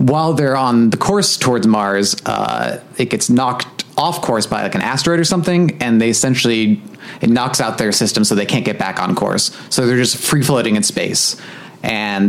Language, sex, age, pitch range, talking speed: English, male, 30-49, 105-135 Hz, 200 wpm